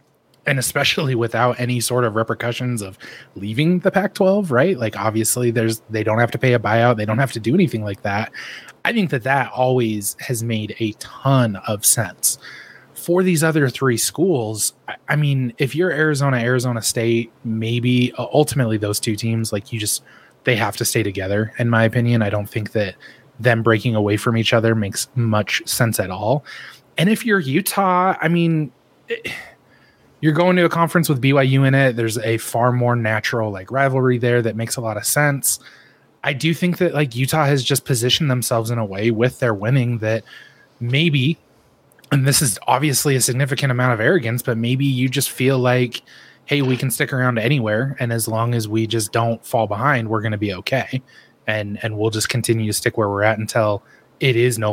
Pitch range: 110-140 Hz